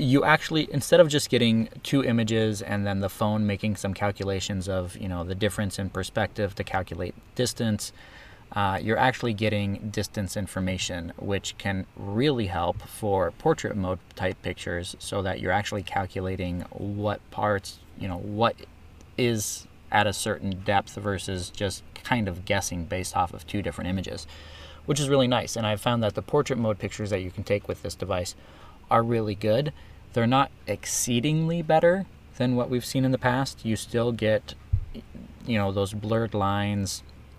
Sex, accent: male, American